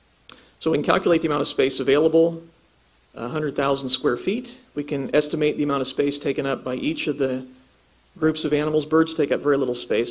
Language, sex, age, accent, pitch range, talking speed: English, male, 50-69, American, 125-155 Hz, 200 wpm